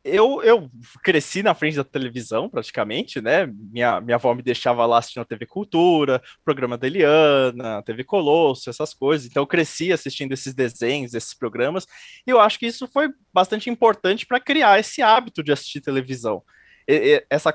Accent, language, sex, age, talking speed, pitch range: Brazilian, Portuguese, male, 20-39, 180 wpm, 135-220 Hz